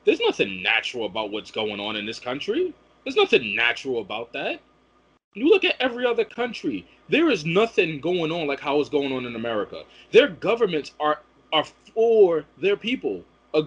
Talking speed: 180 wpm